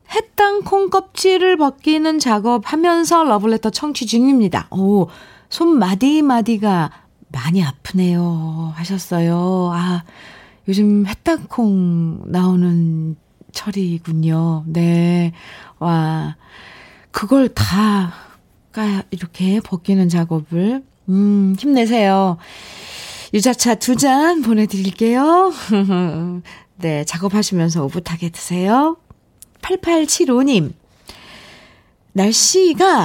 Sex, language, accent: female, Korean, native